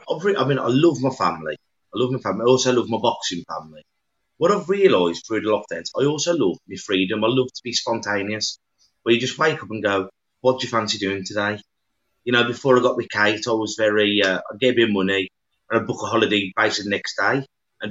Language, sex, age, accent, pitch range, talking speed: English, male, 30-49, British, 105-140 Hz, 230 wpm